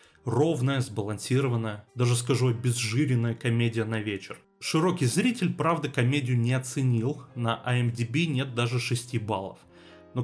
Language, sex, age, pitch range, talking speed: Russian, male, 30-49, 115-140 Hz, 125 wpm